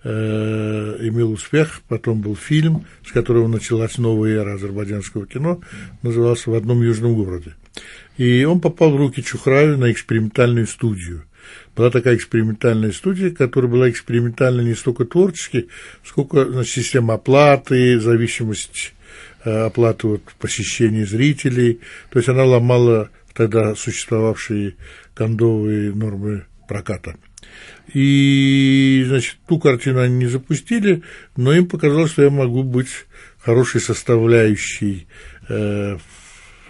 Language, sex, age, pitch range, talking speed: Russian, male, 50-69, 110-135 Hz, 115 wpm